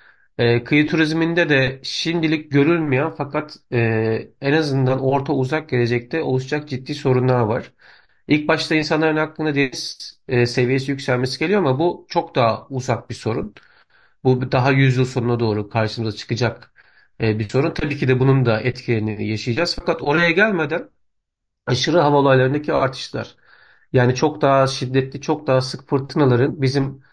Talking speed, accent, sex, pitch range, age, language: 145 wpm, native, male, 120-145 Hz, 40-59, Turkish